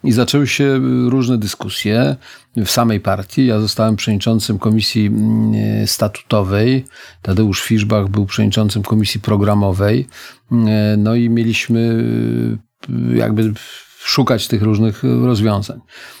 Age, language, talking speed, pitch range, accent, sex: 40-59, Polish, 100 wpm, 105-115 Hz, native, male